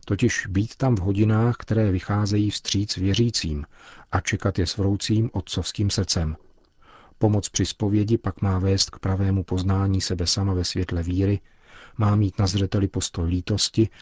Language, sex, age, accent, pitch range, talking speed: Czech, male, 40-59, native, 90-110 Hz, 155 wpm